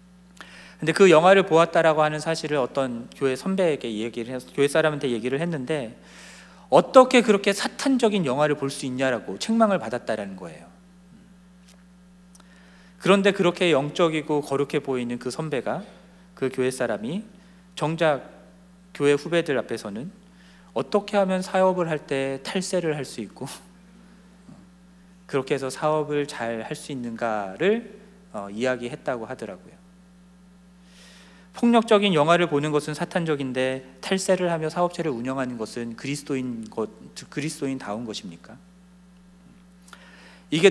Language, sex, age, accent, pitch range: Korean, male, 40-59, native, 140-185 Hz